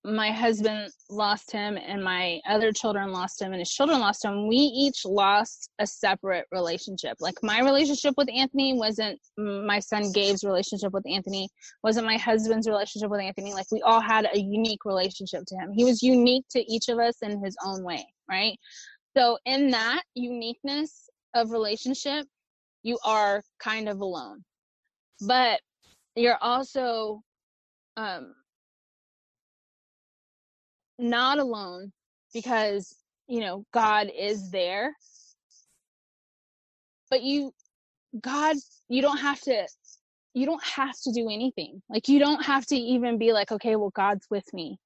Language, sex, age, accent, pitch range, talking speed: English, female, 20-39, American, 205-255 Hz, 145 wpm